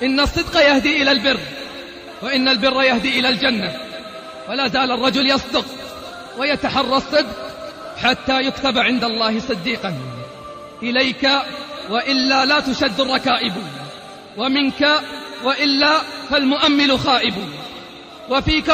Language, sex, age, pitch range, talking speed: Arabic, male, 30-49, 240-285 Hz, 100 wpm